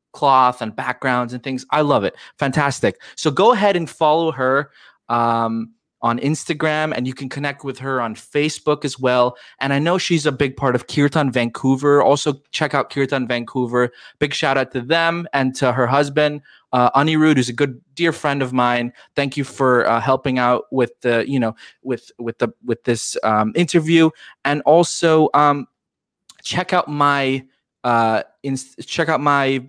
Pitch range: 120-145 Hz